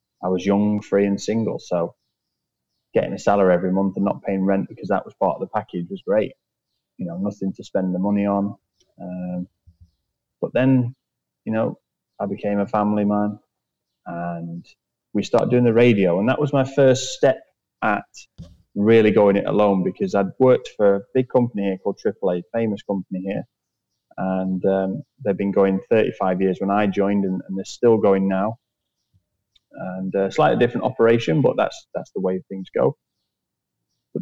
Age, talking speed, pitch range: 20-39, 180 wpm, 95-115 Hz